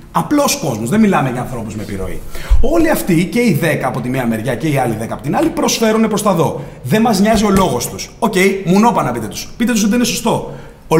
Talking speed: 255 wpm